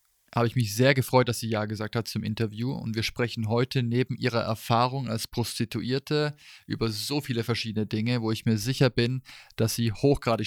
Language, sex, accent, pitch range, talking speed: German, male, German, 110-130 Hz, 195 wpm